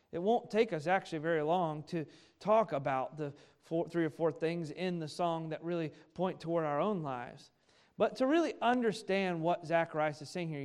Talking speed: 190 wpm